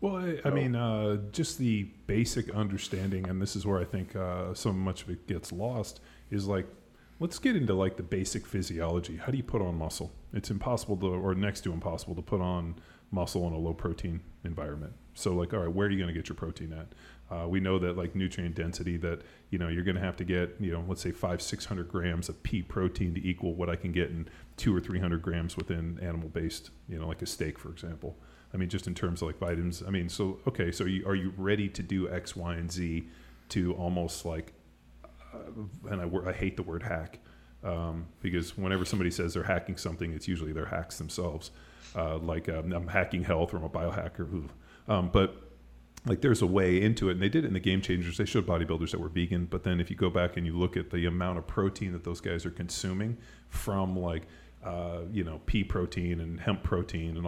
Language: English